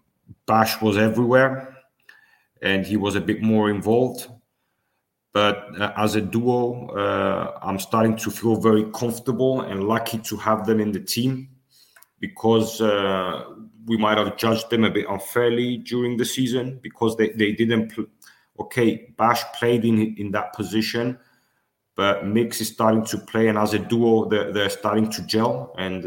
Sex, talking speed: male, 160 wpm